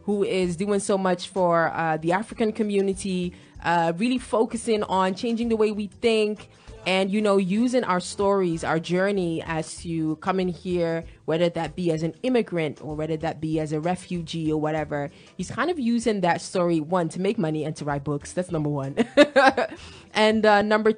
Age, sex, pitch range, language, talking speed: 20-39, female, 160-195 Hz, English, 190 wpm